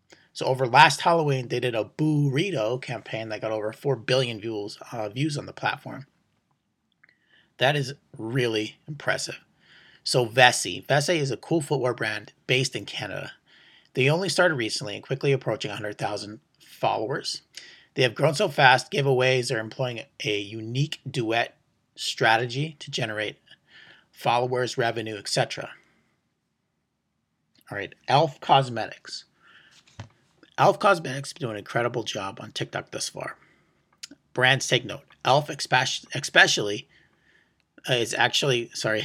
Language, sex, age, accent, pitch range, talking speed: English, male, 30-49, American, 115-145 Hz, 130 wpm